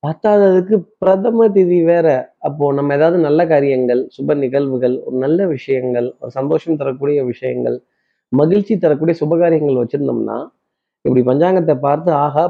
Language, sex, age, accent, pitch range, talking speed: Tamil, male, 30-49, native, 130-180 Hz, 125 wpm